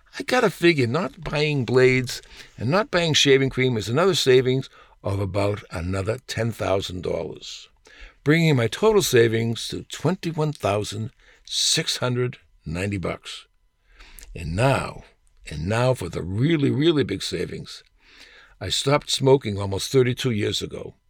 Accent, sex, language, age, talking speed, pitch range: American, male, English, 60-79, 120 wpm, 110-145 Hz